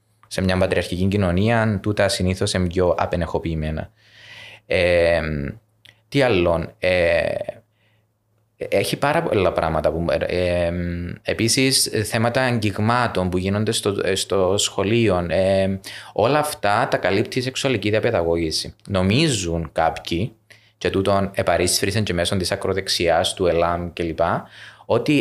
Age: 20-39